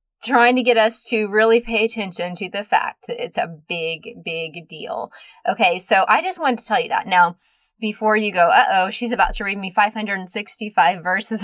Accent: American